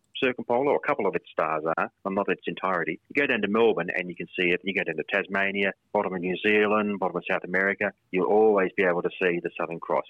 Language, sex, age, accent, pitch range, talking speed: English, male, 30-49, Australian, 90-110 Hz, 260 wpm